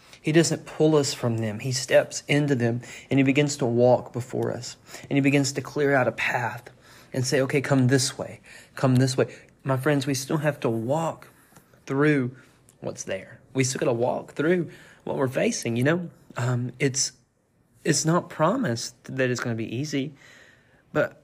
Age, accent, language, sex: 30-49, American, English, male